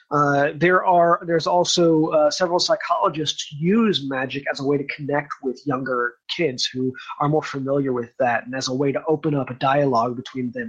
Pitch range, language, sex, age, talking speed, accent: 135-180 Hz, English, male, 30-49, 195 wpm, American